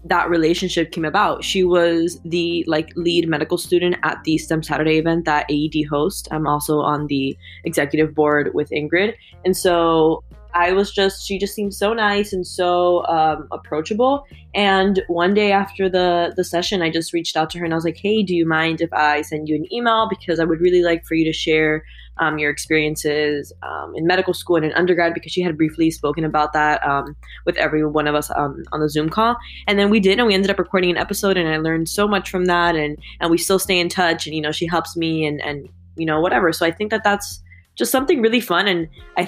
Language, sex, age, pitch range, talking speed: English, female, 20-39, 155-185 Hz, 230 wpm